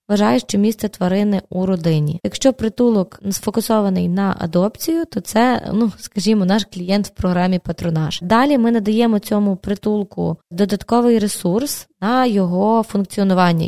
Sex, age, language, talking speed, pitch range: female, 20-39, Ukrainian, 130 wpm, 190-225 Hz